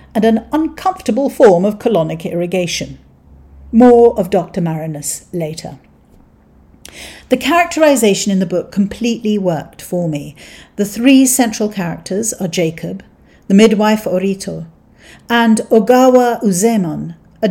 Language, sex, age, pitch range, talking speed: English, female, 50-69, 175-230 Hz, 115 wpm